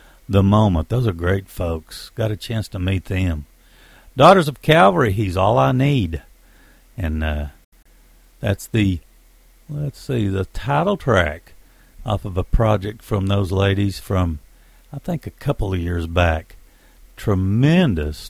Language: English